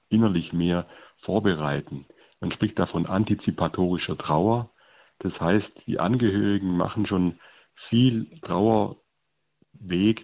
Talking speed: 95 wpm